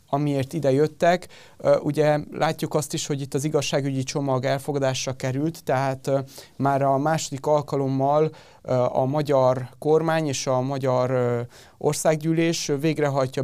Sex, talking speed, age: male, 120 wpm, 30-49